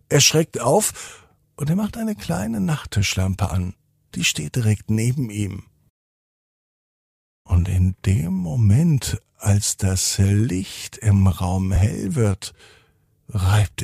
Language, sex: German, male